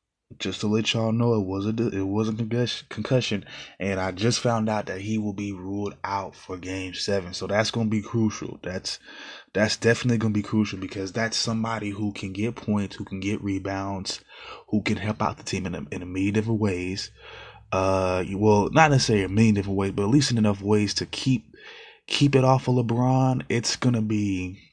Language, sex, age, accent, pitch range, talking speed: English, male, 20-39, American, 100-115 Hz, 205 wpm